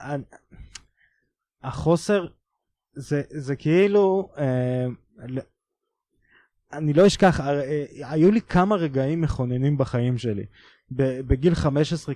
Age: 20-39